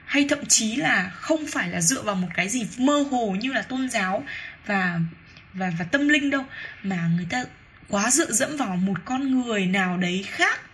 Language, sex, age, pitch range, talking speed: Vietnamese, female, 10-29, 190-280 Hz, 205 wpm